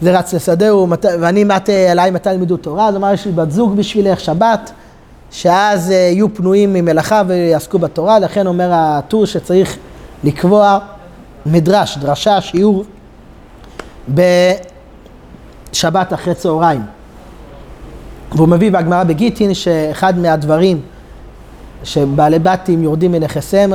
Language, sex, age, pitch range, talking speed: Hebrew, male, 30-49, 155-195 Hz, 115 wpm